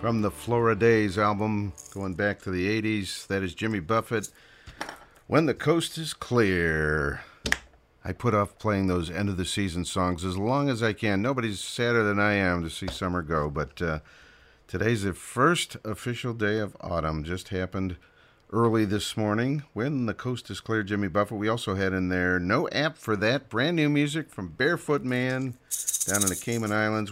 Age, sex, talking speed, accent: 50-69, male, 180 wpm, American